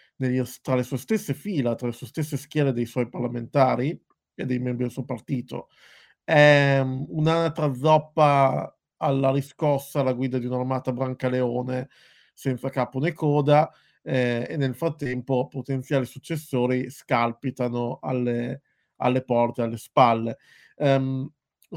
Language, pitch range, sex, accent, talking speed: Italian, 125-140 Hz, male, native, 130 wpm